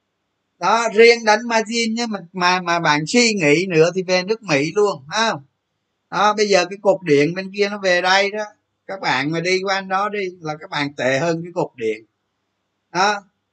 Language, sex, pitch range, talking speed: Vietnamese, male, 145-195 Hz, 205 wpm